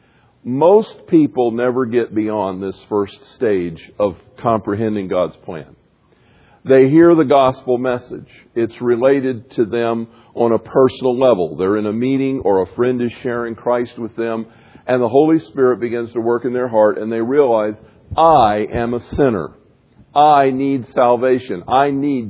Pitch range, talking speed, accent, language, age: 115-145 Hz, 160 wpm, American, English, 50-69